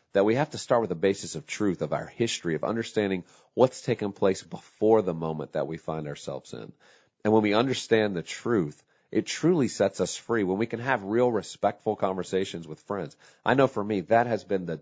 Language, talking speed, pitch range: English, 220 wpm, 90-110 Hz